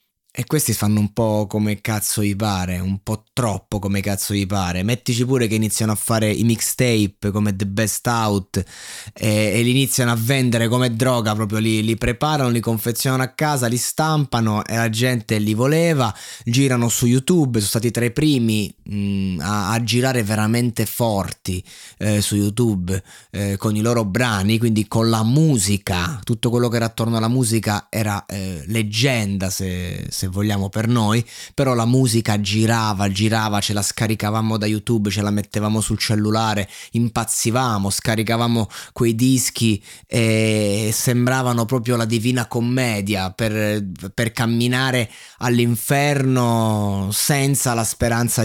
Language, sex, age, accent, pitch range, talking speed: Italian, male, 20-39, native, 105-120 Hz, 150 wpm